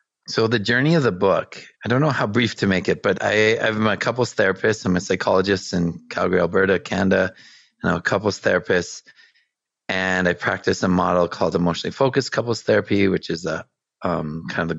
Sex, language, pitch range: male, English, 95-130 Hz